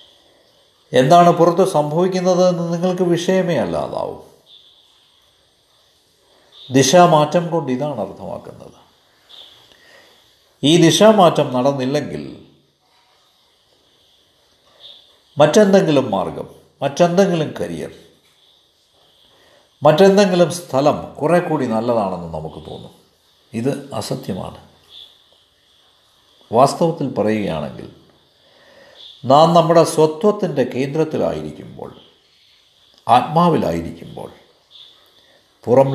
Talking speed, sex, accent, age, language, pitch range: 60 wpm, male, native, 50-69, Malayalam, 125-175 Hz